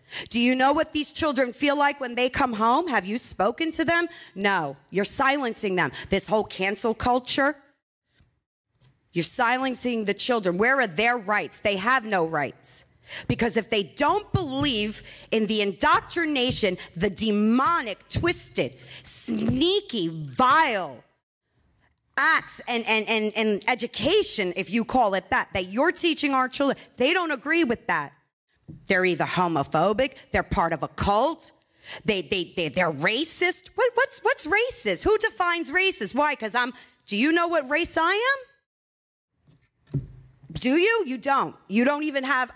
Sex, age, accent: female, 40-59, American